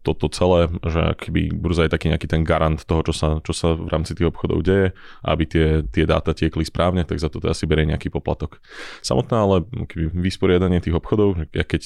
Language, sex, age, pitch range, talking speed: Slovak, male, 20-39, 80-90 Hz, 200 wpm